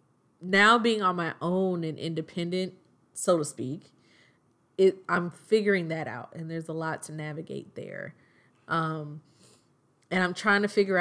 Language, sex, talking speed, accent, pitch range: English, female, 155 wpm, American, 150-180 Hz